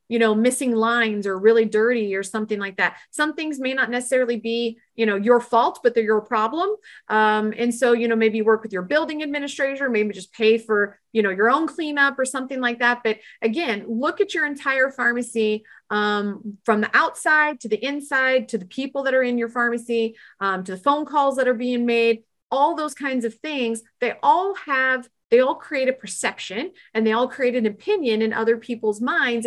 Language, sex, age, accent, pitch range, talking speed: English, female, 30-49, American, 220-265 Hz, 210 wpm